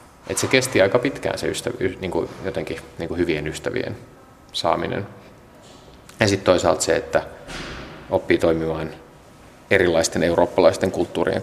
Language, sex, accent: Finnish, male, native